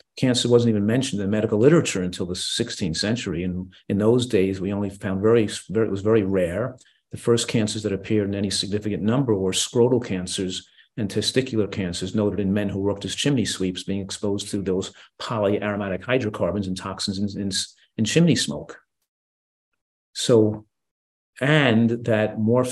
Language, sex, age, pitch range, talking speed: English, male, 50-69, 95-115 Hz, 170 wpm